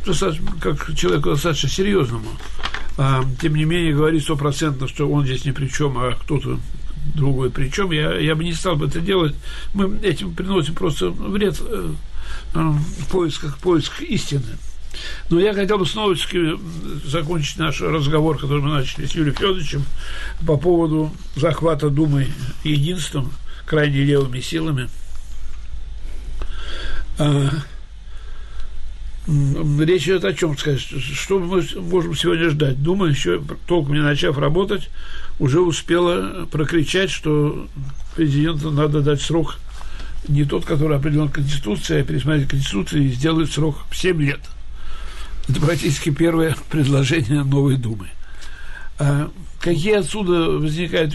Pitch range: 140-165 Hz